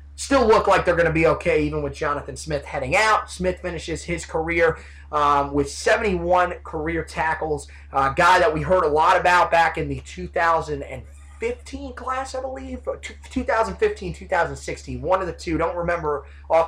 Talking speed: 175 wpm